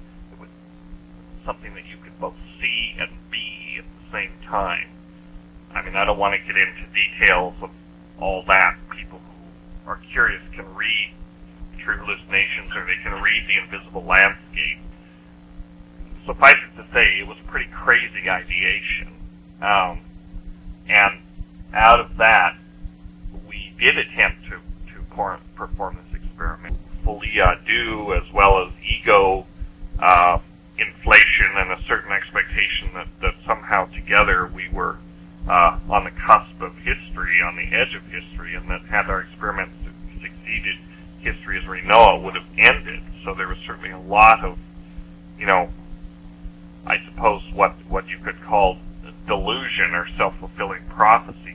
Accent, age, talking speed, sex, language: American, 40-59, 145 wpm, male, English